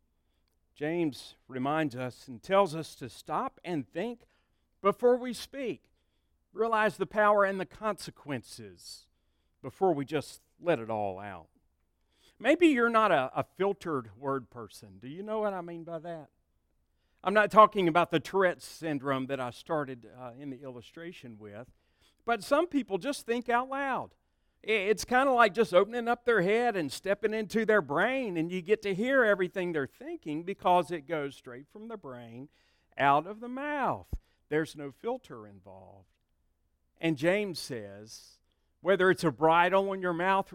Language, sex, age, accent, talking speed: English, male, 50-69, American, 165 wpm